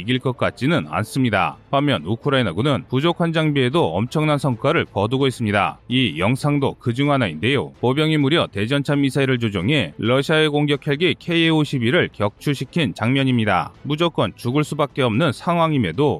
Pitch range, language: 115-150 Hz, Korean